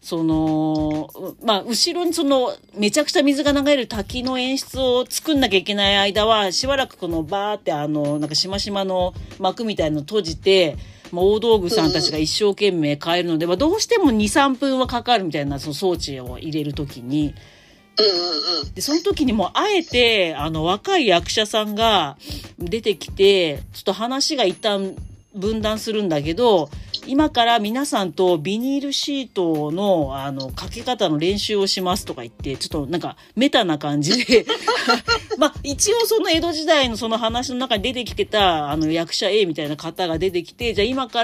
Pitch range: 165-260 Hz